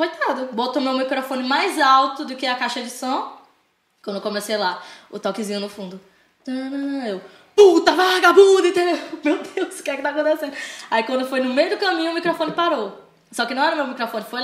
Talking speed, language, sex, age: 205 wpm, Portuguese, female, 10-29